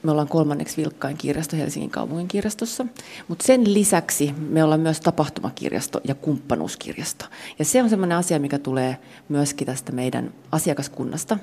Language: Finnish